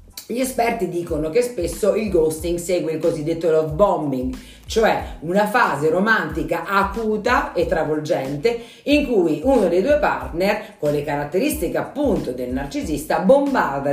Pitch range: 165-235 Hz